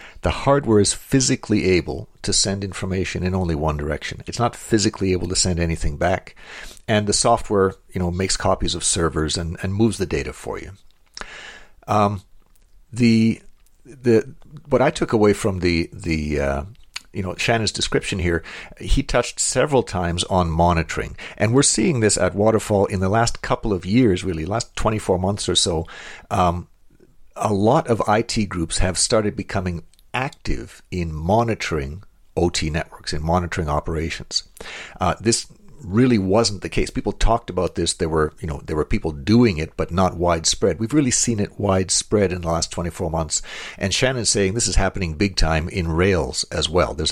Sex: male